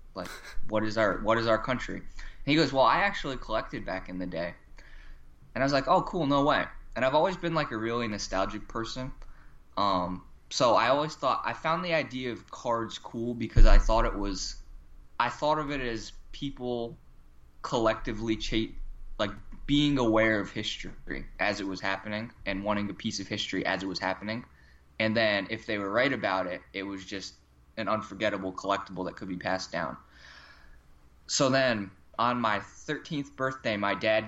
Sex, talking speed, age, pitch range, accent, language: male, 185 wpm, 20-39, 90-115 Hz, American, English